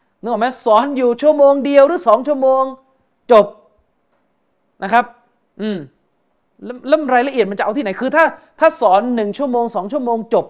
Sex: male